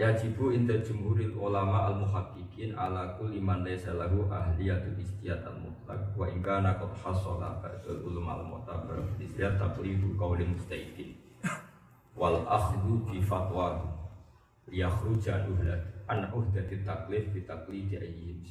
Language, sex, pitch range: Indonesian, male, 95-115 Hz